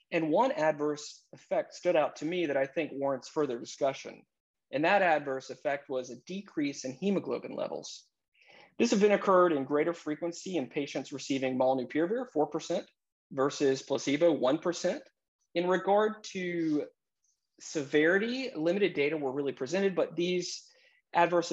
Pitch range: 135-170 Hz